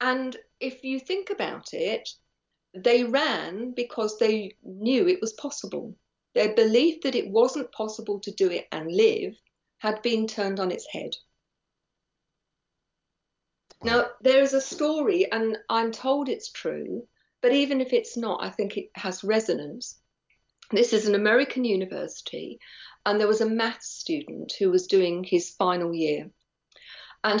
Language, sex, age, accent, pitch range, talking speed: English, female, 50-69, British, 200-260 Hz, 150 wpm